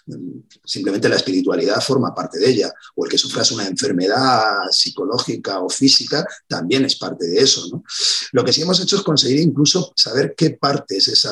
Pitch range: 115-160 Hz